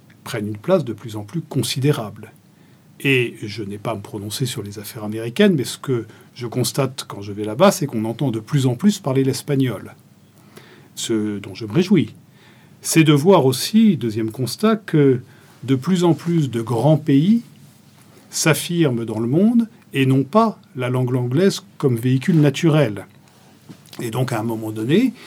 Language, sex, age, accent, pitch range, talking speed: French, male, 40-59, French, 115-165 Hz, 180 wpm